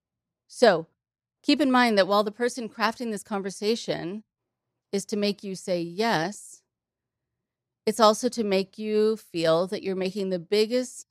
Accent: American